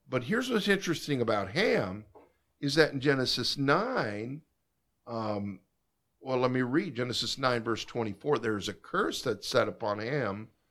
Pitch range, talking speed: 110-140 Hz, 150 wpm